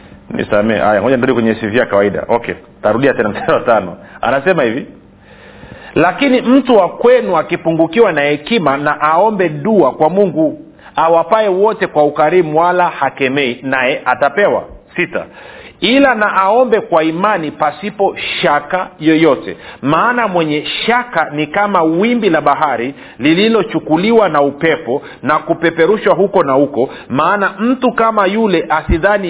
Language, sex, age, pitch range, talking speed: Swahili, male, 50-69, 150-205 Hz, 135 wpm